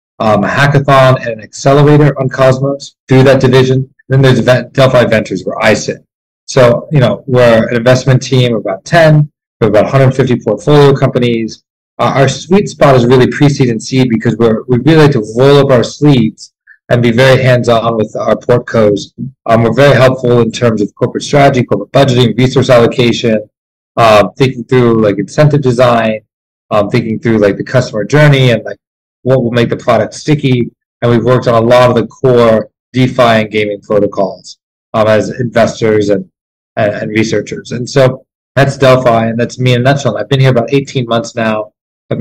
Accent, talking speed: American, 185 wpm